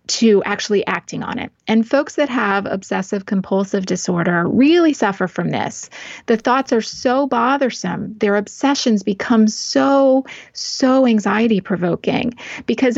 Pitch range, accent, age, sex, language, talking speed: 210-255 Hz, American, 30-49, female, English, 135 wpm